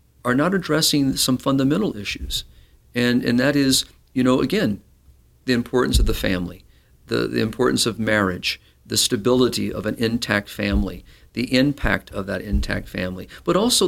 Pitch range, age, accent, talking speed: 100-125 Hz, 50-69, American, 160 wpm